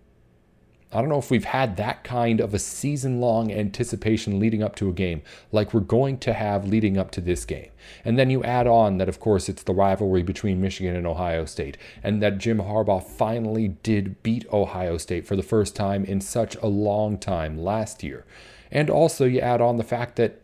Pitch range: 95-115 Hz